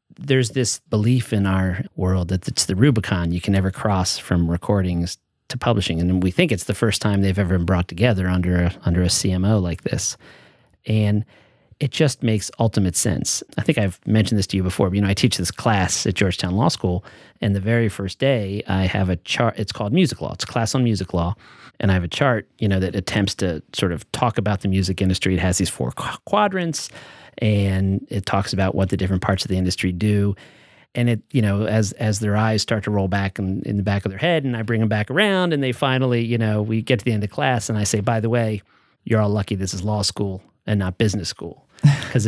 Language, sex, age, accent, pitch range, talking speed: English, male, 40-59, American, 95-125 Hz, 240 wpm